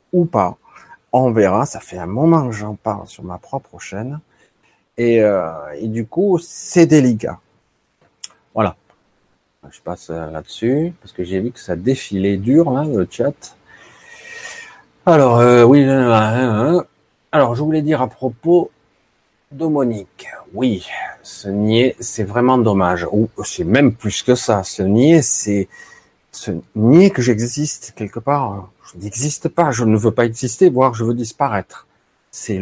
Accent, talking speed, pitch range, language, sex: French, 155 wpm, 105-140 Hz, French, male